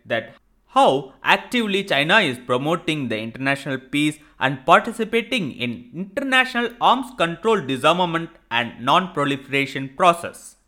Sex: male